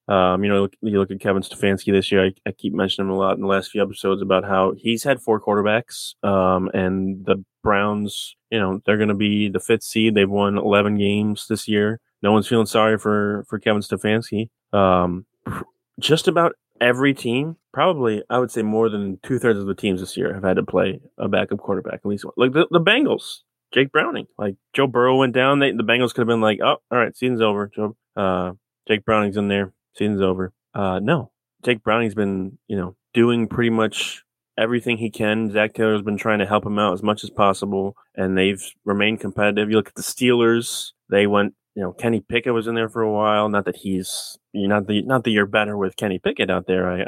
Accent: American